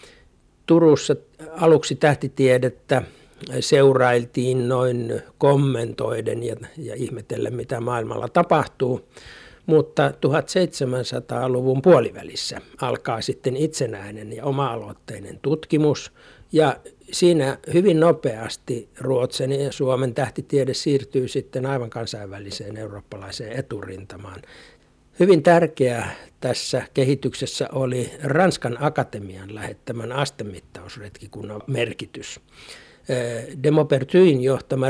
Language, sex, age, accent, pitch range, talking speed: Finnish, male, 60-79, native, 115-150 Hz, 80 wpm